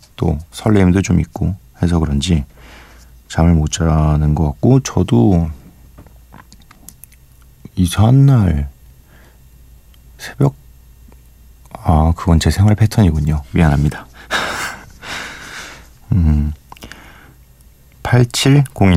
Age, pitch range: 40-59, 70-100 Hz